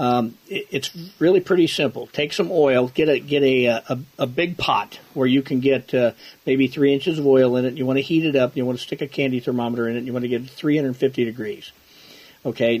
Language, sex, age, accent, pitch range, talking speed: English, male, 50-69, American, 125-145 Hz, 245 wpm